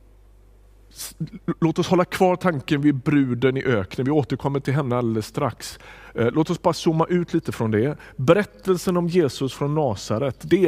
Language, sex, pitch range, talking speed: Swedish, male, 110-145 Hz, 165 wpm